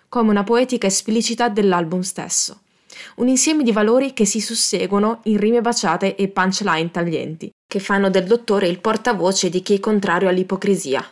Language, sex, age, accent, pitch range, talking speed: Italian, female, 20-39, native, 185-235 Hz, 160 wpm